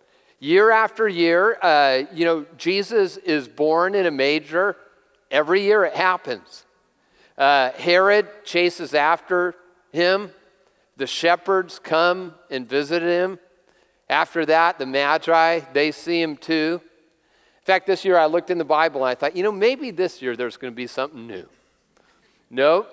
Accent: American